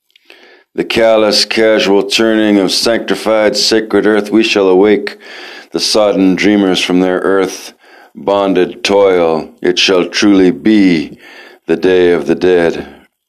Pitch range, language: 90-105 Hz, English